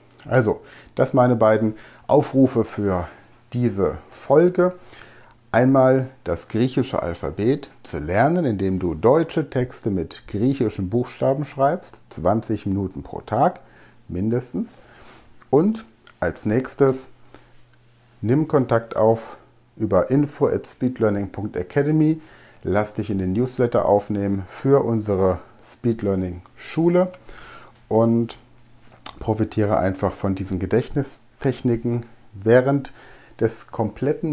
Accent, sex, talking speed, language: German, male, 95 wpm, German